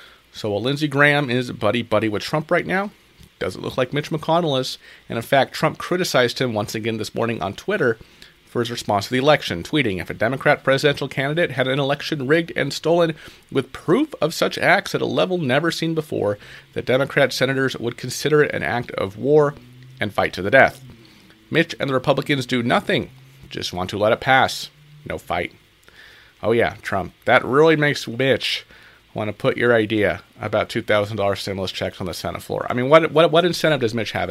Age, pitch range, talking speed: 40-59, 115-155 Hz, 200 wpm